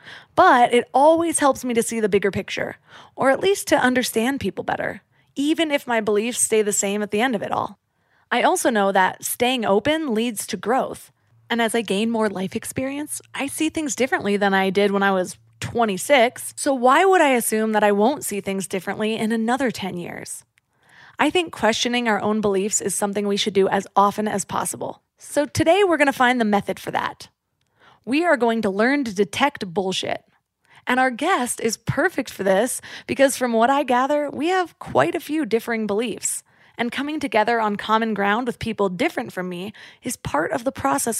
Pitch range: 205-270 Hz